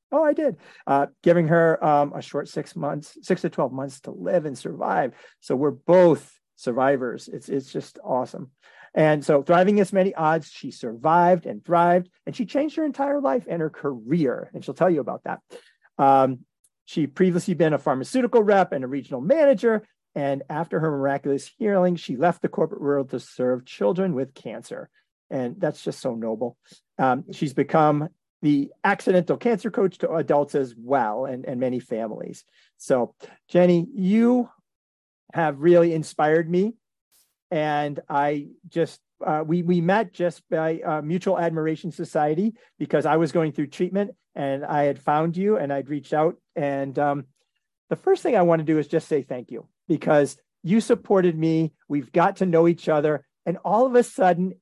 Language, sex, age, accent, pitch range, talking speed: English, male, 40-59, American, 145-190 Hz, 180 wpm